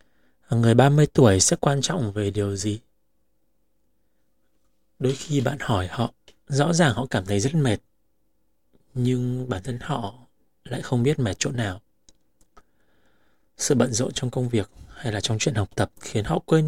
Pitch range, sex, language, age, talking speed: 105-140 Hz, male, Vietnamese, 20-39, 165 wpm